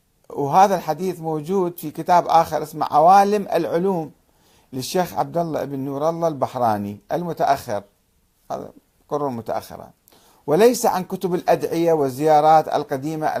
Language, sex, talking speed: Arabic, male, 115 wpm